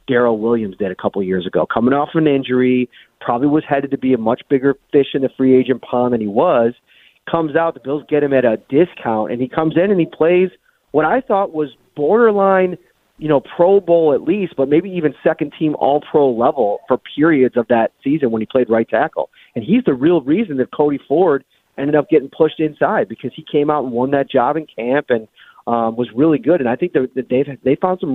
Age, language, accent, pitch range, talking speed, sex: 30-49, English, American, 125-155 Hz, 230 wpm, male